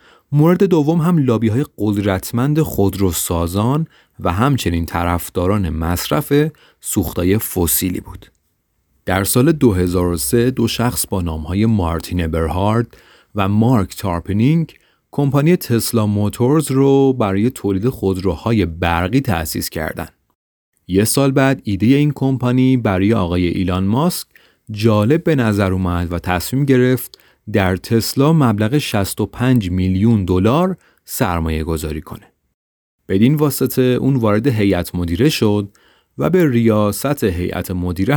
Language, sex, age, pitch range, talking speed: Persian, male, 30-49, 95-130 Hz, 120 wpm